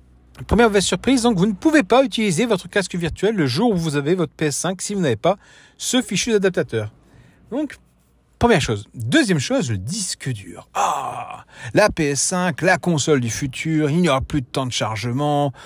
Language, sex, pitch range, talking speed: French, male, 115-175 Hz, 190 wpm